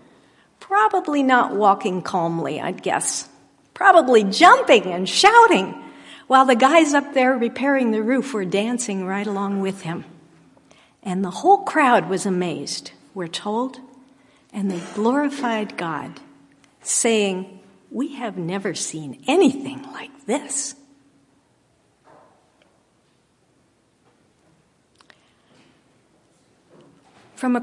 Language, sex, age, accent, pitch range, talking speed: English, female, 50-69, American, 200-275 Hz, 100 wpm